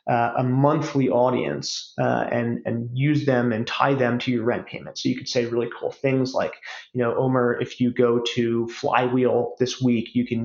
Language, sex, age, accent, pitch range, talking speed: English, male, 30-49, American, 120-135 Hz, 205 wpm